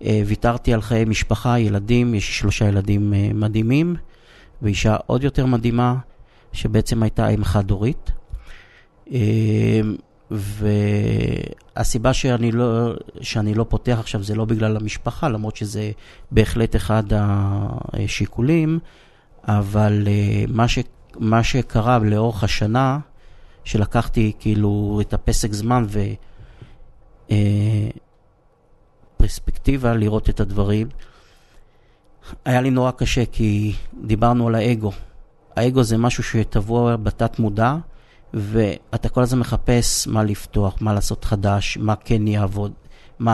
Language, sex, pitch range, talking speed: Hebrew, male, 105-120 Hz, 115 wpm